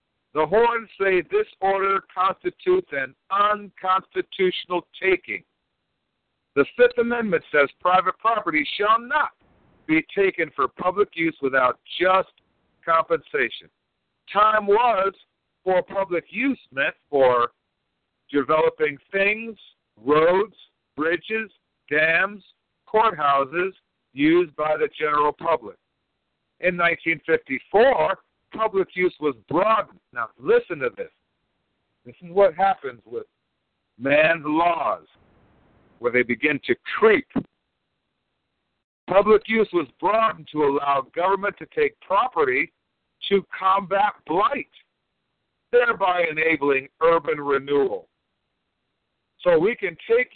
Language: English